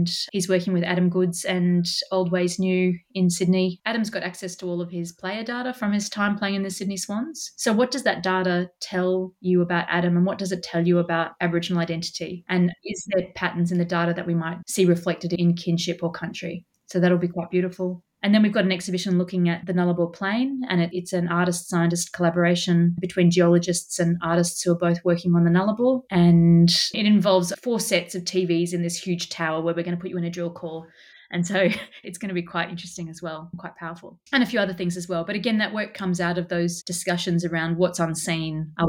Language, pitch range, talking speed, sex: English, 170-185 Hz, 225 wpm, female